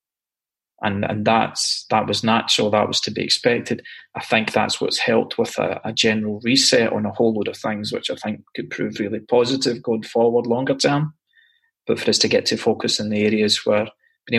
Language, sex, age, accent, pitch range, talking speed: English, male, 20-39, British, 105-120 Hz, 210 wpm